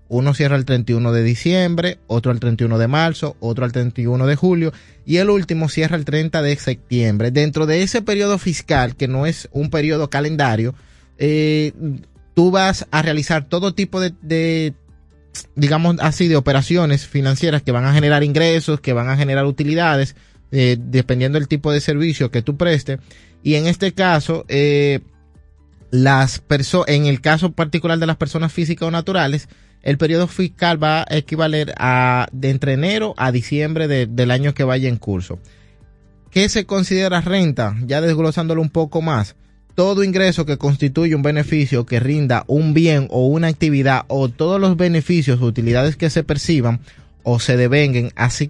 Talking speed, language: 170 wpm, Spanish